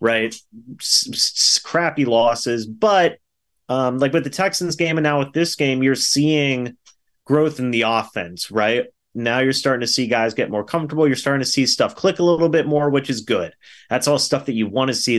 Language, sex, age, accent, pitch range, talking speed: English, male, 30-49, American, 115-150 Hz, 205 wpm